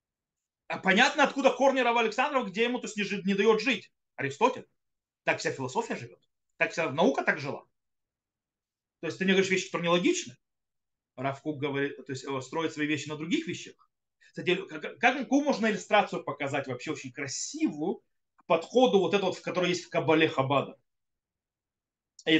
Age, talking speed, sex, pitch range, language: 30-49, 160 wpm, male, 155-235 Hz, Russian